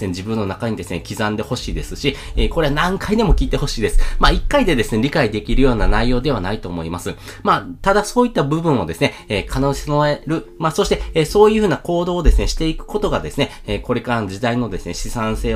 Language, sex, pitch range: Japanese, male, 100-145 Hz